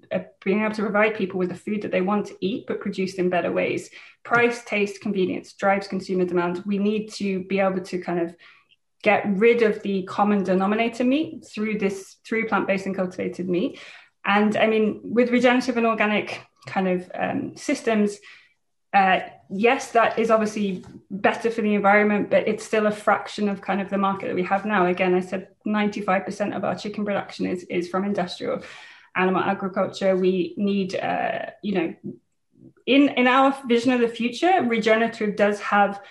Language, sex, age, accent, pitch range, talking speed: English, female, 20-39, British, 190-220 Hz, 185 wpm